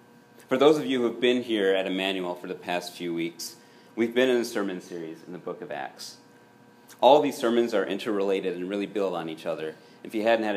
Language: English